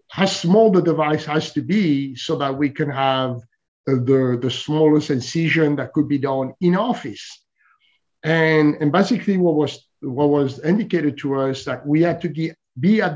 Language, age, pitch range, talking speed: English, 50-69, 135-165 Hz, 180 wpm